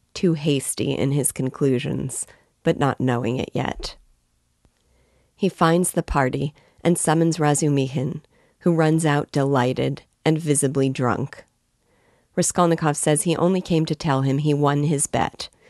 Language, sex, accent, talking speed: English, female, American, 140 wpm